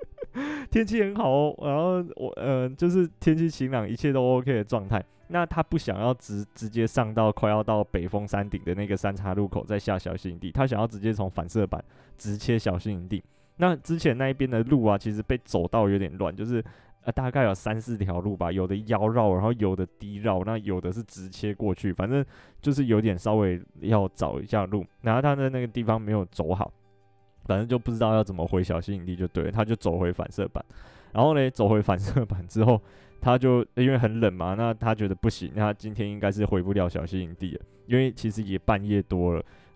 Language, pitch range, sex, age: Chinese, 100-130 Hz, male, 20-39